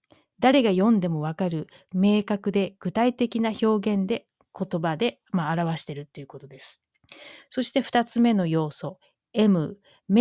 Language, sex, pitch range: Japanese, female, 165-230 Hz